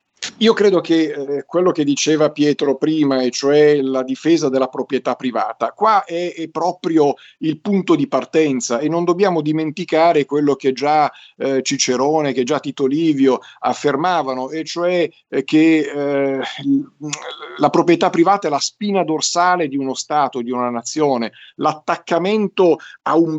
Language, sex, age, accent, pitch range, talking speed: Italian, male, 40-59, native, 135-170 Hz, 150 wpm